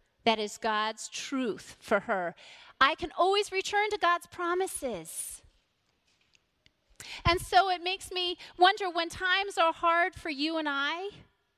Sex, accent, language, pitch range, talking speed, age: female, American, English, 305-390 Hz, 140 wpm, 30-49